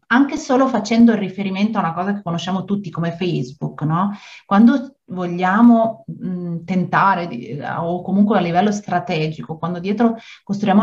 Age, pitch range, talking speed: 30-49, 180-235 Hz, 145 wpm